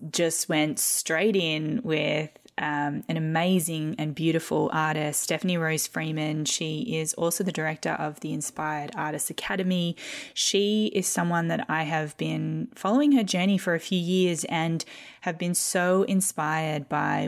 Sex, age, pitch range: female, 20-39, 155-185 Hz